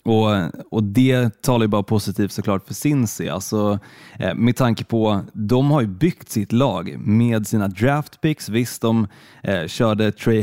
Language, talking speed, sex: Swedish, 165 wpm, male